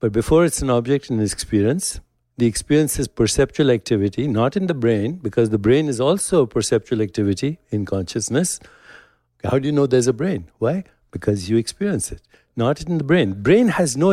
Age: 60-79